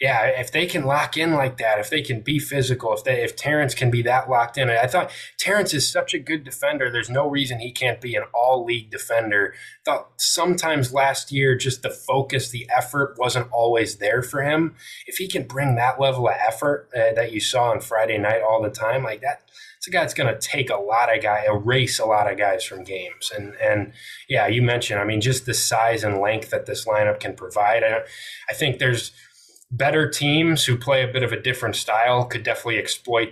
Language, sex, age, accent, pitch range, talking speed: English, male, 20-39, American, 110-140 Hz, 230 wpm